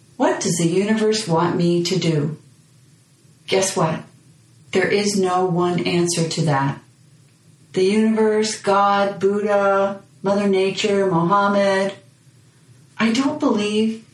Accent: American